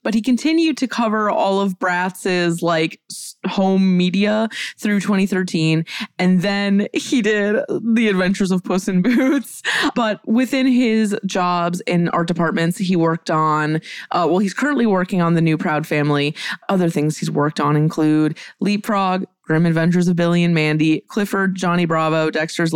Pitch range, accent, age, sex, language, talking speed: 165-220 Hz, American, 20-39, female, English, 160 wpm